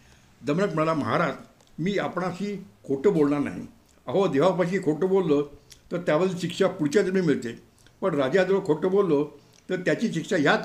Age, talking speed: 60-79, 140 wpm